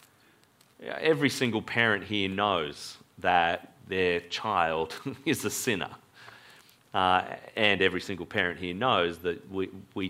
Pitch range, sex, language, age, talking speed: 105-145 Hz, male, English, 30-49, 125 wpm